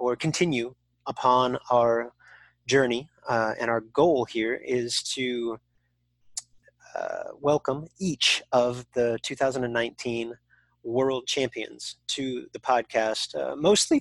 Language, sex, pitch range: English, male, 115-130 Hz